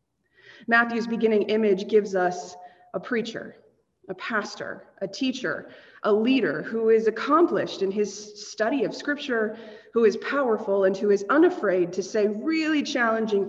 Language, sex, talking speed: English, female, 140 wpm